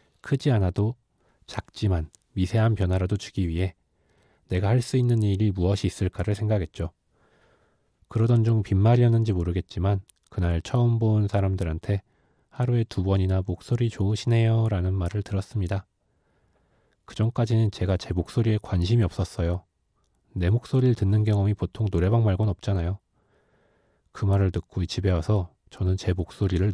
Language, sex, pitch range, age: Korean, male, 90-110 Hz, 20-39